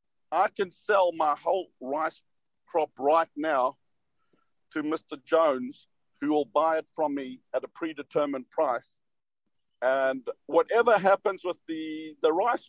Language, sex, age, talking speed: English, male, 50-69, 135 wpm